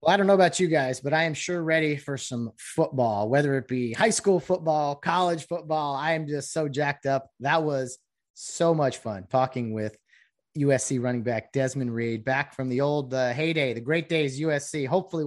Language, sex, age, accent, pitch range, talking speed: English, male, 30-49, American, 125-160 Hz, 205 wpm